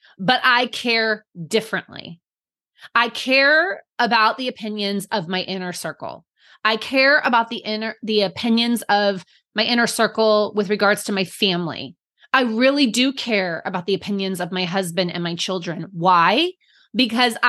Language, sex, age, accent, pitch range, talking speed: English, female, 20-39, American, 190-260 Hz, 150 wpm